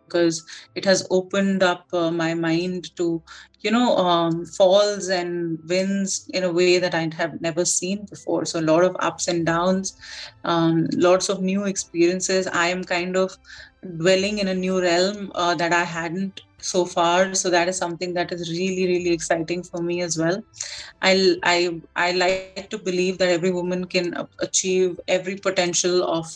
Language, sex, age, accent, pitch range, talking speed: Hindi, female, 30-49, native, 170-185 Hz, 180 wpm